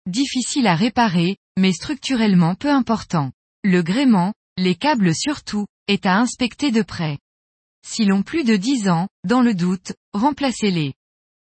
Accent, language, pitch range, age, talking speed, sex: French, French, 180-250 Hz, 20-39, 140 wpm, female